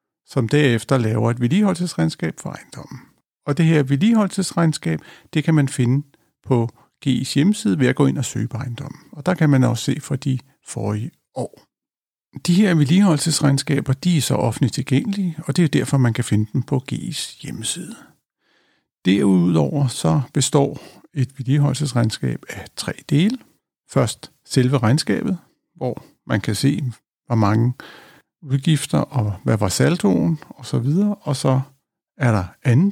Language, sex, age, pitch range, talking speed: Danish, male, 50-69, 120-155 Hz, 155 wpm